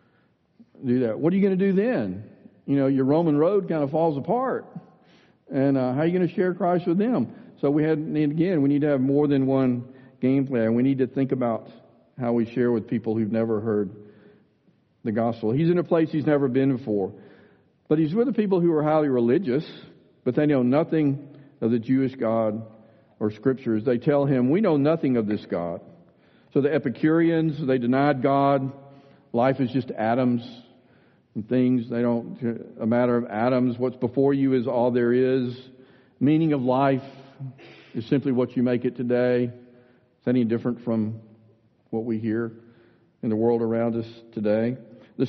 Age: 50-69